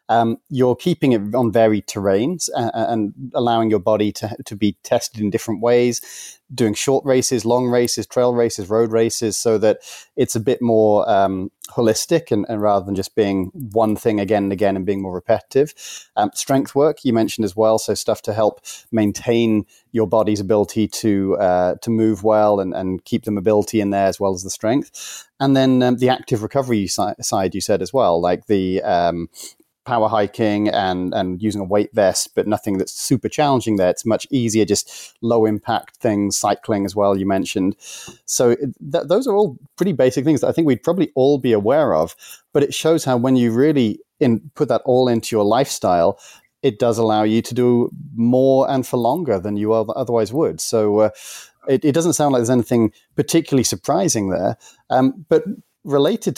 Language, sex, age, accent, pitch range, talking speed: English, male, 30-49, British, 105-130 Hz, 195 wpm